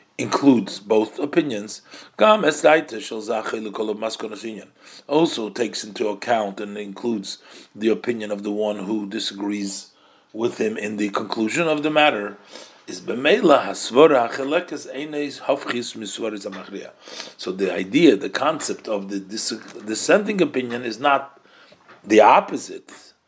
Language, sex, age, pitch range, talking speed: English, male, 40-59, 105-145 Hz, 95 wpm